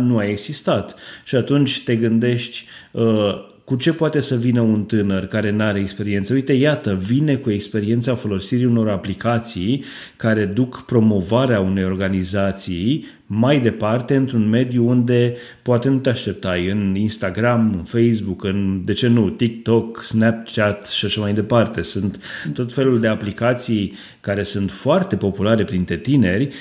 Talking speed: 145 wpm